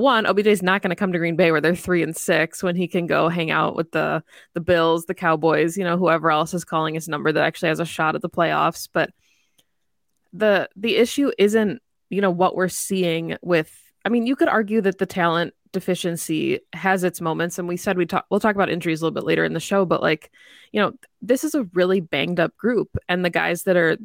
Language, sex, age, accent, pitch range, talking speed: English, female, 20-39, American, 165-195 Hz, 245 wpm